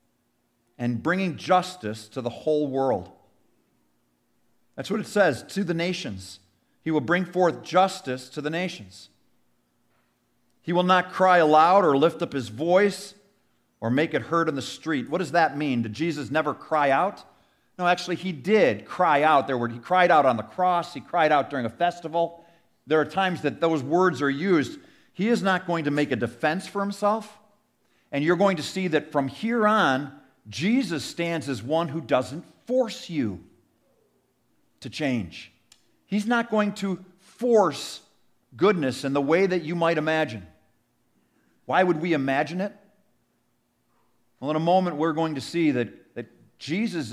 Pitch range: 120-180 Hz